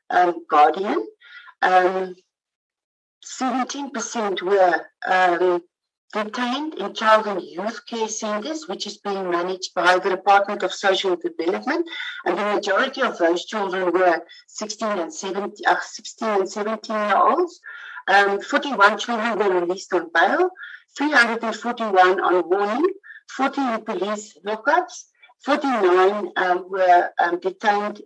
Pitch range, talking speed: 185-245 Hz, 120 wpm